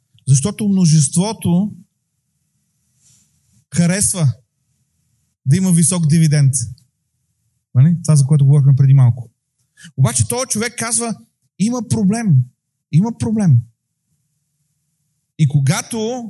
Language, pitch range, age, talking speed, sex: Bulgarian, 135-165 Hz, 30-49, 90 wpm, male